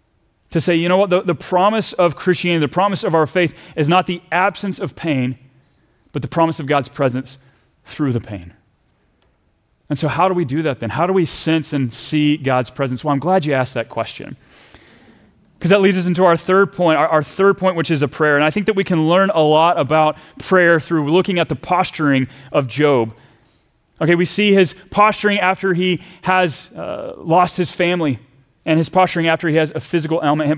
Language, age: English, 30-49